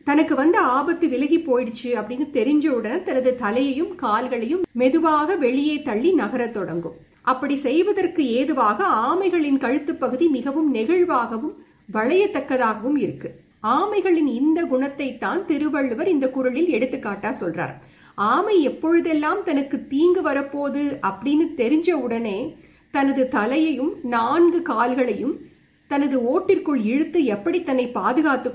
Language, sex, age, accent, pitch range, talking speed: Tamil, female, 50-69, native, 245-320 Hz, 100 wpm